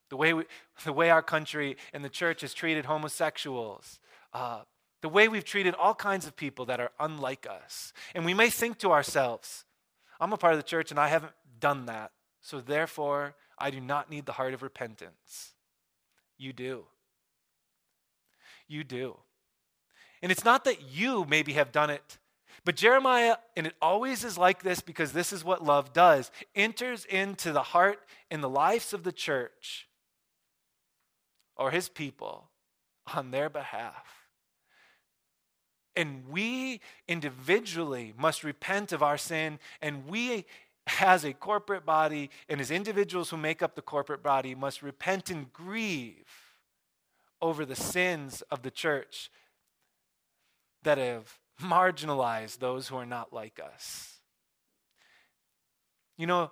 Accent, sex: American, male